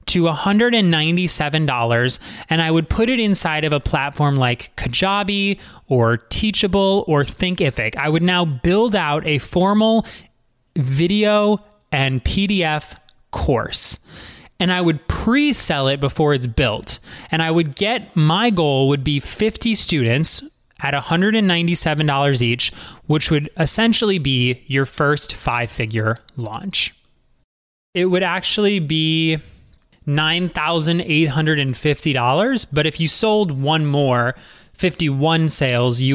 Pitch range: 135-185 Hz